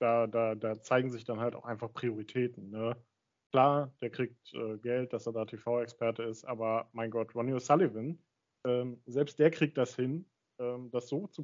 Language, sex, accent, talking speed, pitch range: German, male, German, 190 wpm, 120-145 Hz